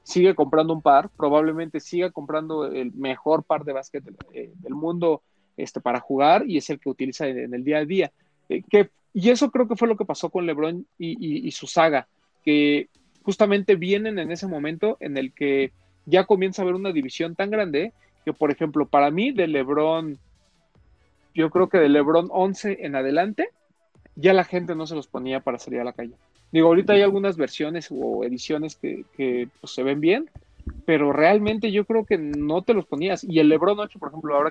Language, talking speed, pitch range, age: Spanish, 210 wpm, 140-180 Hz, 40-59